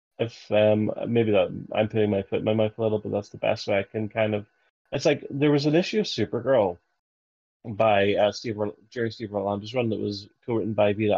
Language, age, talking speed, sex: English, 30-49, 225 wpm, male